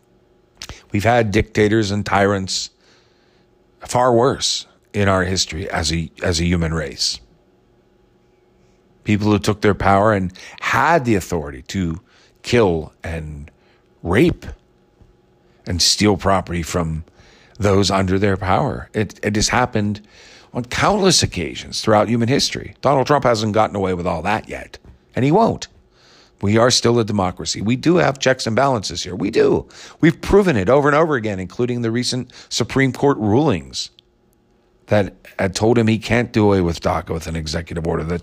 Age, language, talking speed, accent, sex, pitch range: 50-69, English, 160 wpm, American, male, 90-115 Hz